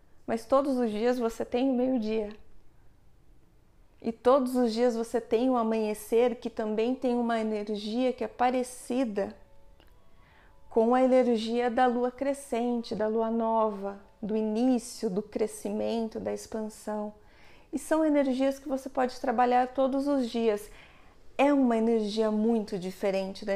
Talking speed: 140 wpm